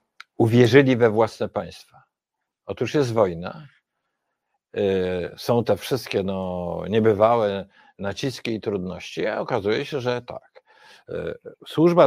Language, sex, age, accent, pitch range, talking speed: Polish, male, 50-69, native, 110-160 Hz, 100 wpm